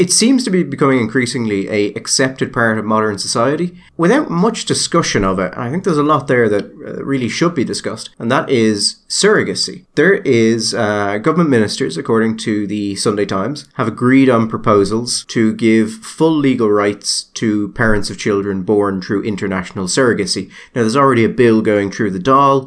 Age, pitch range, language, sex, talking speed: 30-49, 100-135 Hz, English, male, 180 wpm